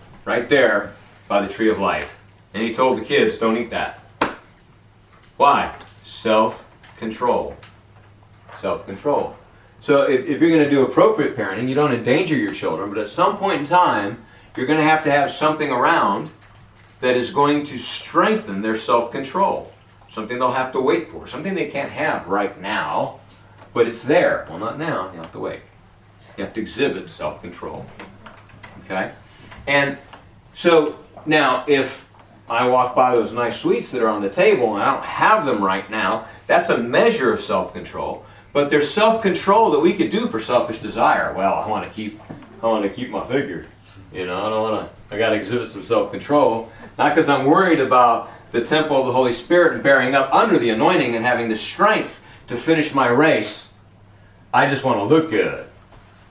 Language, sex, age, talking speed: English, male, 40-59, 180 wpm